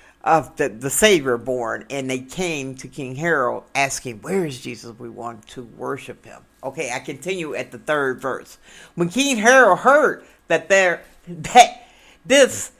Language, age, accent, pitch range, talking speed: English, 60-79, American, 140-215 Hz, 165 wpm